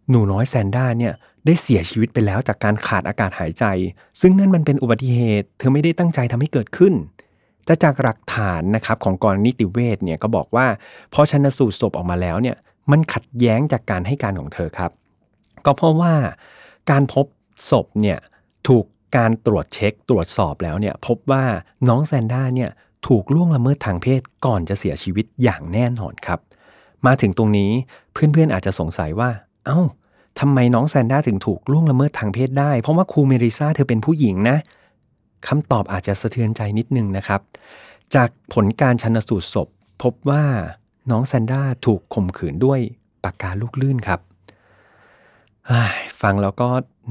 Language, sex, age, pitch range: Thai, male, 30-49, 100-135 Hz